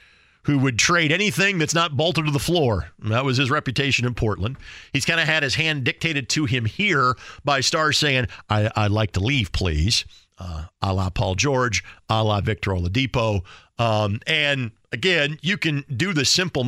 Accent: American